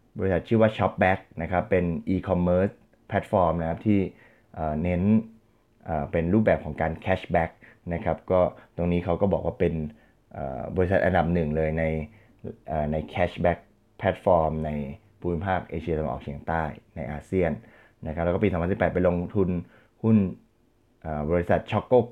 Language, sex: Thai, male